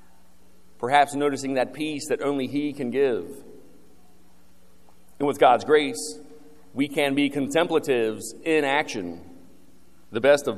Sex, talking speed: male, 125 wpm